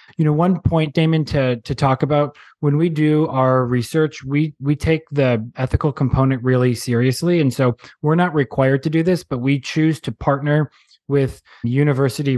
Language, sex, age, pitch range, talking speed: English, male, 20-39, 125-145 Hz, 180 wpm